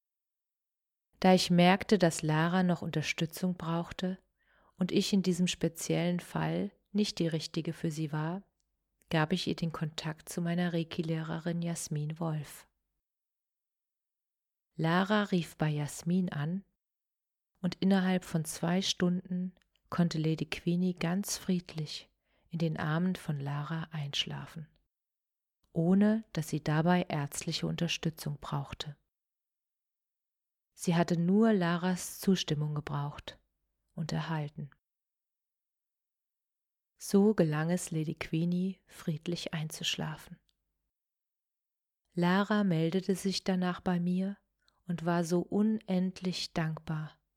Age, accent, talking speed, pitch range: 40-59, German, 105 wpm, 160-185 Hz